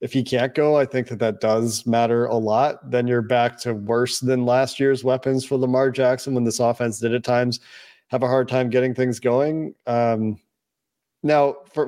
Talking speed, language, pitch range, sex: 200 wpm, English, 120-135 Hz, male